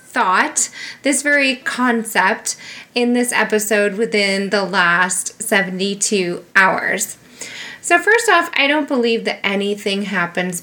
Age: 20-39